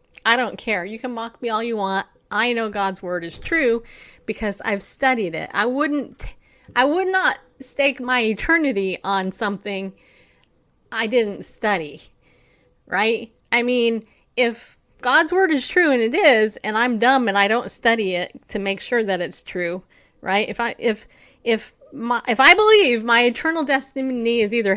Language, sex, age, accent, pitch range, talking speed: English, female, 30-49, American, 205-265 Hz, 175 wpm